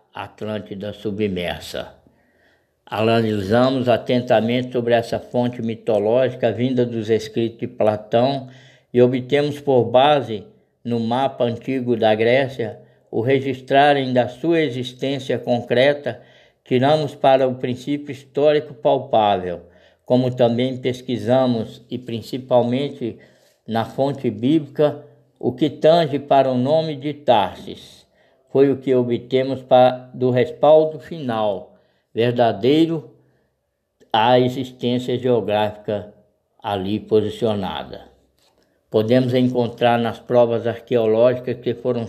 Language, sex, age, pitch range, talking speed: Portuguese, male, 60-79, 115-135 Hz, 100 wpm